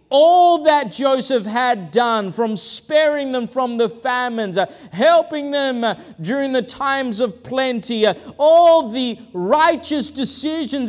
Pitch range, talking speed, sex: 170-255 Hz, 140 wpm, male